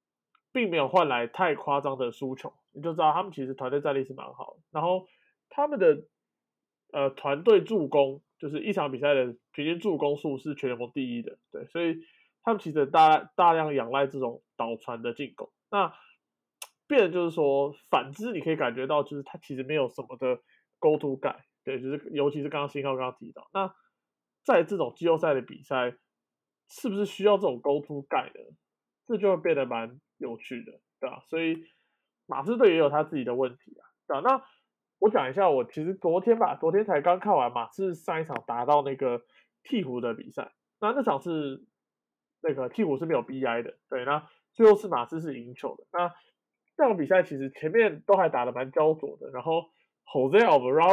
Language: Chinese